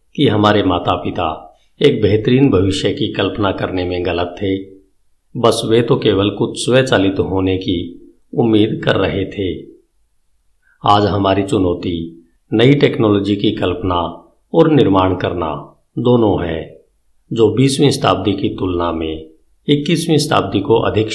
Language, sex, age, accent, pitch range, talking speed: Hindi, male, 50-69, native, 90-115 Hz, 135 wpm